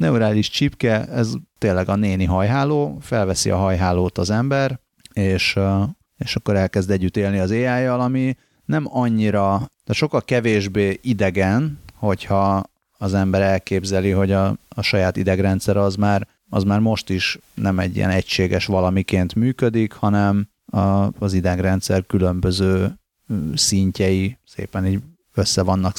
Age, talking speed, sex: 30-49, 130 wpm, male